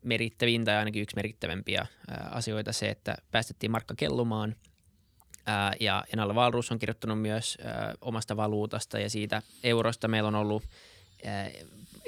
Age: 20-39